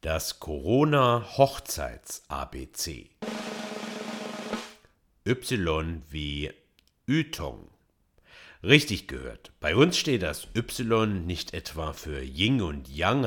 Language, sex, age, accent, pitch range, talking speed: German, male, 60-79, German, 80-125 Hz, 75 wpm